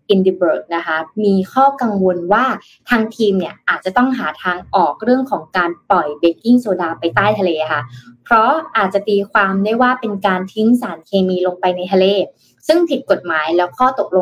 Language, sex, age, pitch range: Thai, female, 20-39, 180-235 Hz